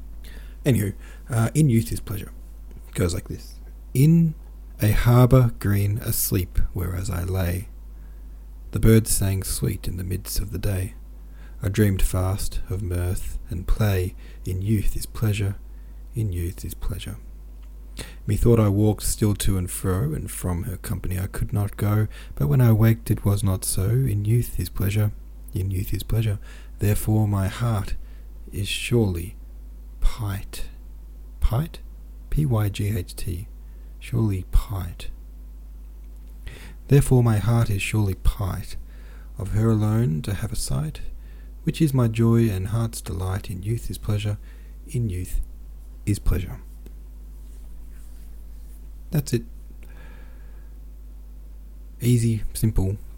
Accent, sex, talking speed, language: Australian, male, 130 wpm, English